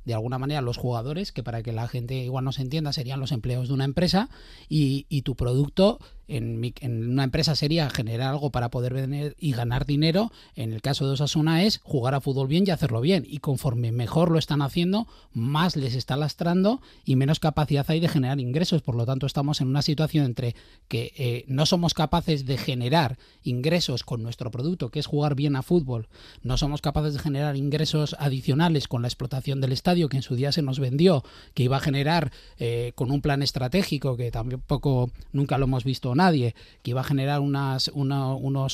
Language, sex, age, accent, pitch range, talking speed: Spanish, male, 30-49, Spanish, 130-155 Hz, 205 wpm